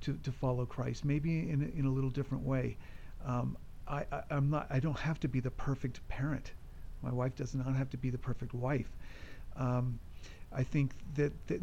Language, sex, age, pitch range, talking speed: English, male, 50-69, 125-150 Hz, 185 wpm